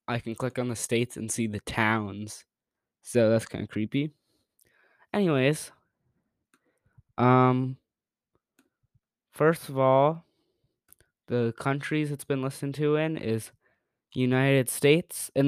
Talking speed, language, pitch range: 120 wpm, English, 115-140 Hz